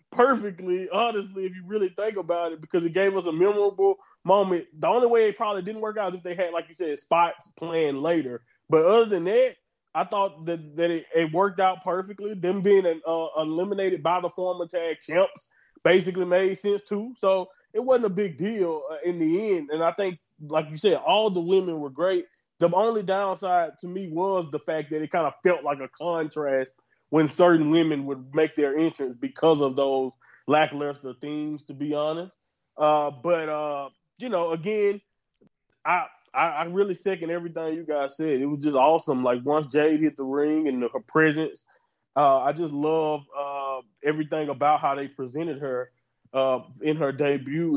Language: English